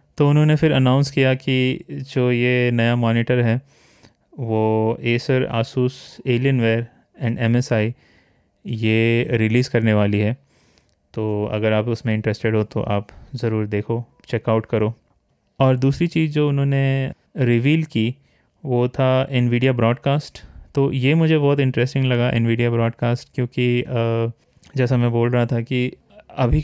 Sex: male